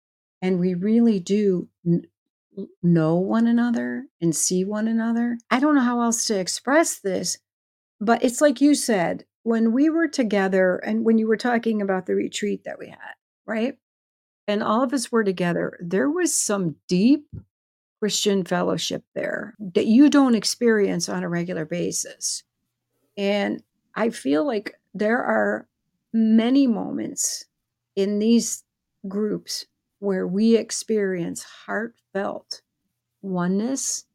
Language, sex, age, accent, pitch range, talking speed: English, female, 50-69, American, 185-225 Hz, 135 wpm